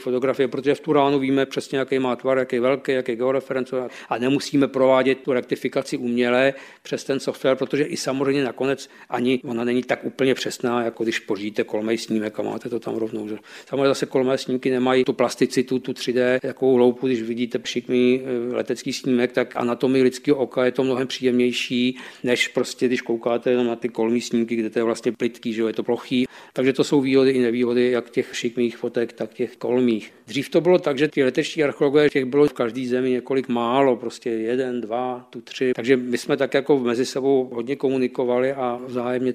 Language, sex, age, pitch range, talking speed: Czech, male, 50-69, 120-135 Hz, 200 wpm